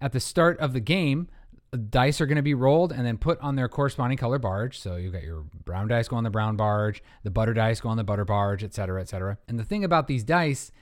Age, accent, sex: 30-49, American, male